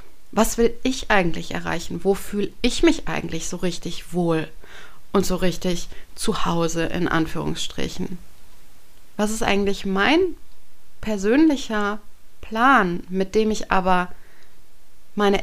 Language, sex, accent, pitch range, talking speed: German, female, German, 180-235 Hz, 120 wpm